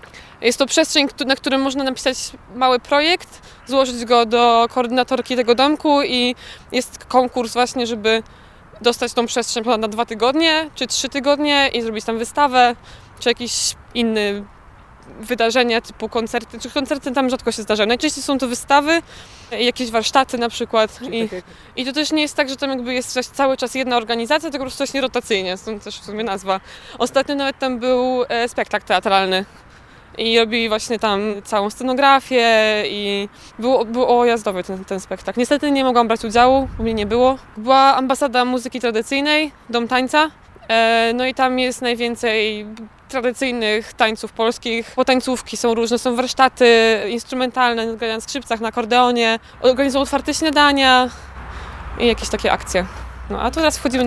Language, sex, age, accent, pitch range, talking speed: Polish, female, 20-39, native, 230-265 Hz, 160 wpm